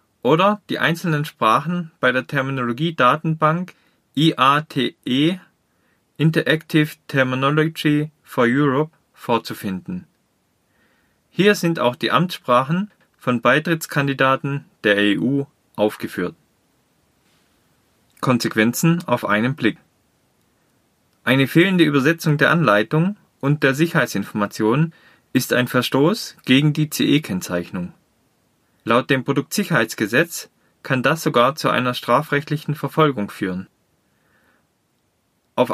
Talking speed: 90 wpm